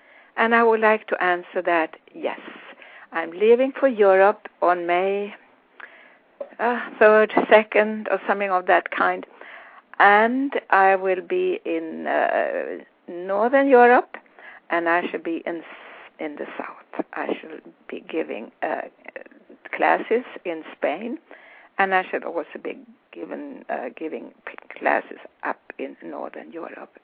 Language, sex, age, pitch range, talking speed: English, female, 60-79, 195-270 Hz, 130 wpm